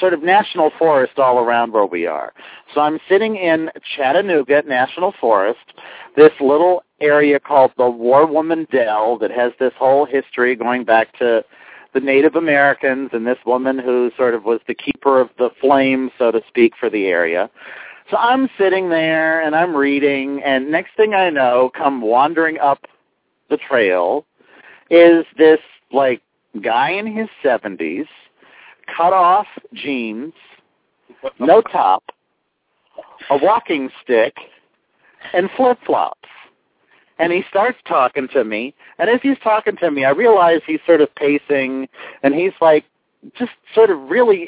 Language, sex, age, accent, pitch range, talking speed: English, male, 50-69, American, 135-190 Hz, 150 wpm